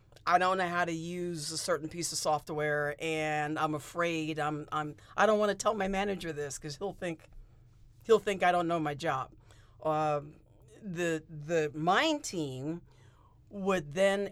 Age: 50-69